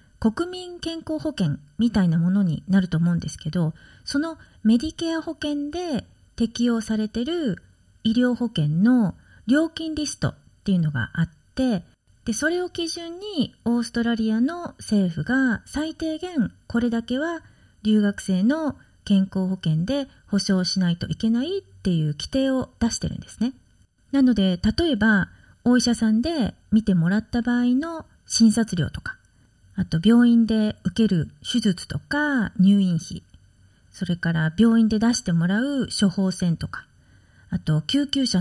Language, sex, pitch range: Japanese, female, 185-265 Hz